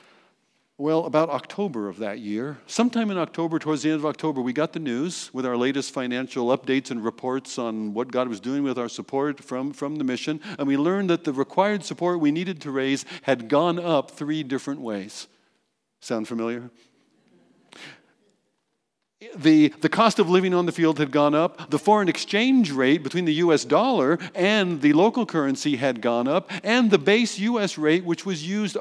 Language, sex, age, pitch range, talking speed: English, male, 50-69, 130-190 Hz, 185 wpm